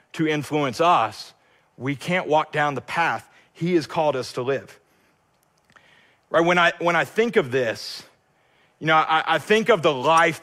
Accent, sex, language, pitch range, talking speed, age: American, male, English, 155-205 Hz, 180 wpm, 40-59